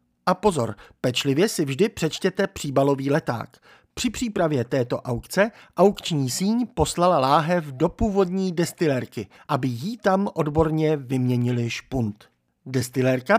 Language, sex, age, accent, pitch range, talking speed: Czech, male, 50-69, native, 125-185 Hz, 115 wpm